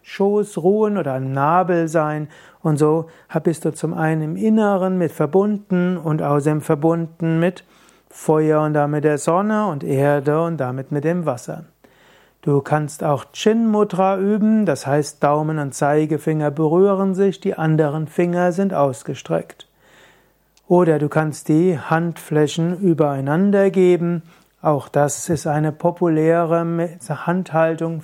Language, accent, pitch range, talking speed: German, German, 150-185 Hz, 135 wpm